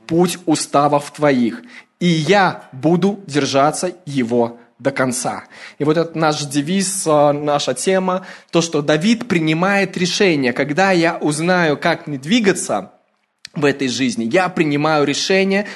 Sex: male